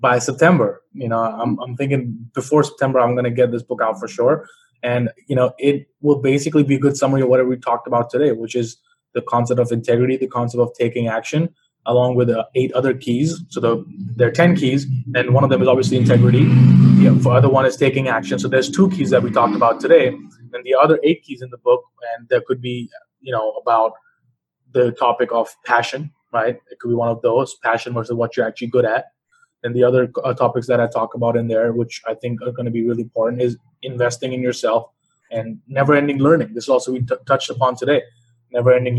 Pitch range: 120-140 Hz